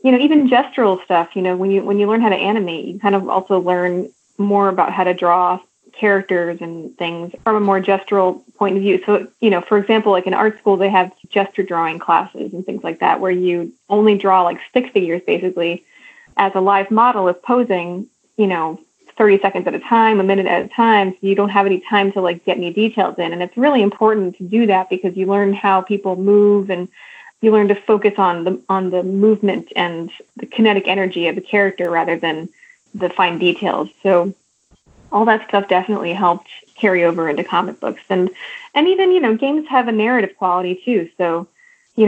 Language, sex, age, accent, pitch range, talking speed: English, female, 30-49, American, 180-215 Hz, 215 wpm